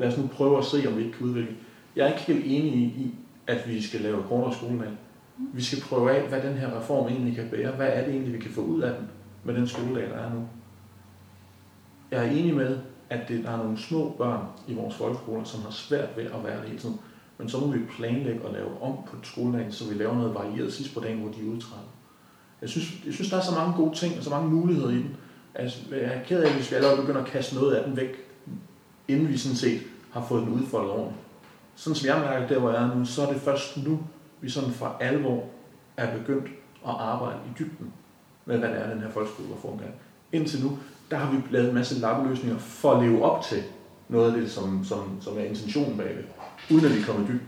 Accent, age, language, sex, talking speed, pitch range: native, 40-59, Danish, male, 250 wpm, 115-140 Hz